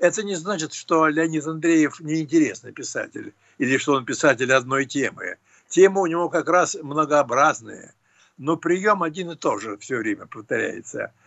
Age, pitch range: 60-79, 135-180 Hz